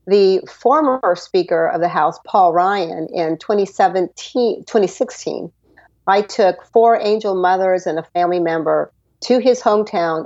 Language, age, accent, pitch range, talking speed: English, 50-69, American, 170-205 Hz, 135 wpm